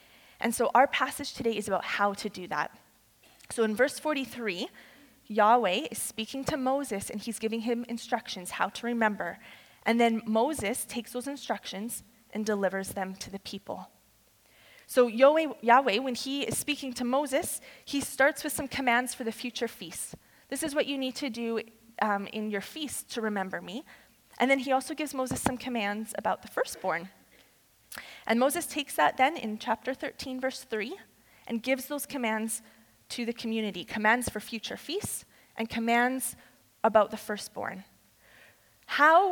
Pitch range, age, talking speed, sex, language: 220-265 Hz, 20-39, 165 wpm, female, English